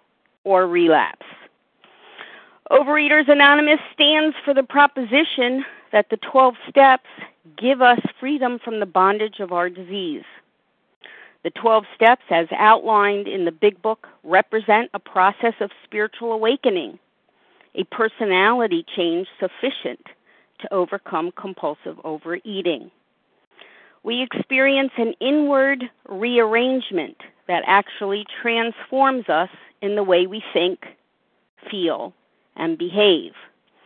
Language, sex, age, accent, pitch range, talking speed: English, female, 50-69, American, 200-265 Hz, 110 wpm